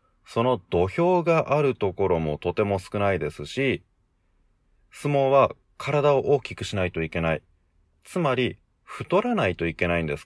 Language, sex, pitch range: Japanese, male, 85-115 Hz